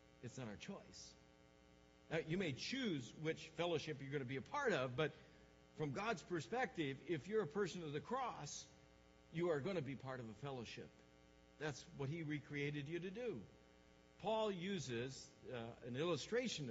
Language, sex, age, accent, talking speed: English, male, 60-79, American, 170 wpm